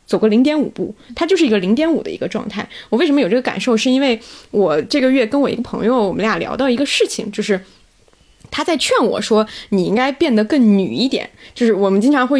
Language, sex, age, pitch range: Chinese, female, 20-39, 205-265 Hz